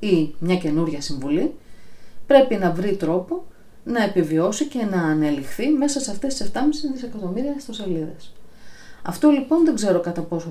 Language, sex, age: Greek, female, 40-59